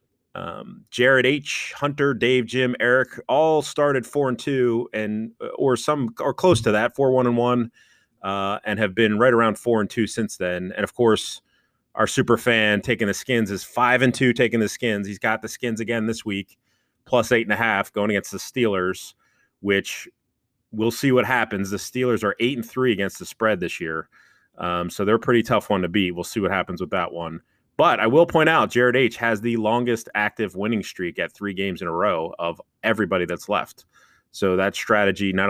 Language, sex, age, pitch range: English, male, 30-49, 100-125 Hz